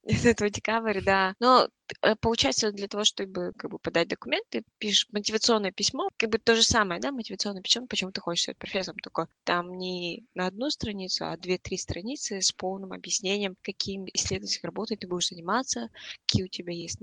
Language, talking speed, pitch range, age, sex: Russian, 175 wpm, 175-220 Hz, 20-39, female